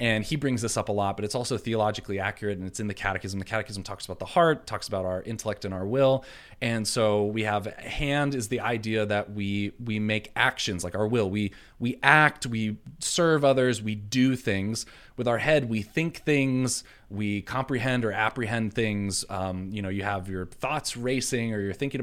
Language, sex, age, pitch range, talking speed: English, male, 20-39, 100-130 Hz, 210 wpm